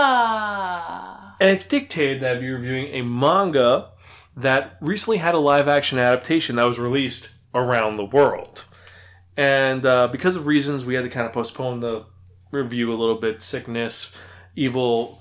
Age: 20-39